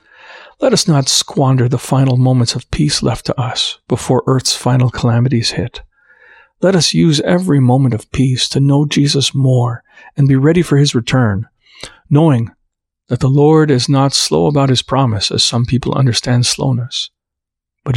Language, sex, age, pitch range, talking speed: English, male, 40-59, 120-145 Hz, 165 wpm